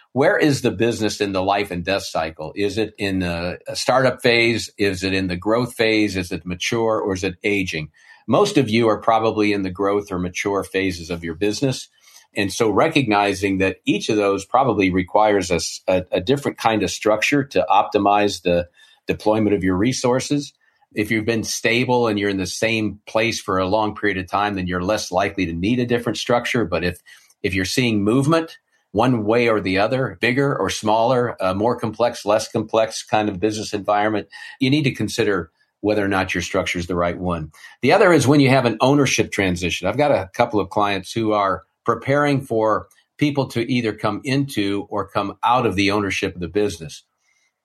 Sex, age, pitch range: male, 50-69, 95-115 Hz